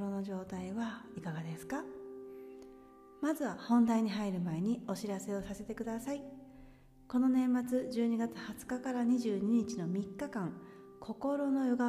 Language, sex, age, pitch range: Japanese, female, 40-59, 175-220 Hz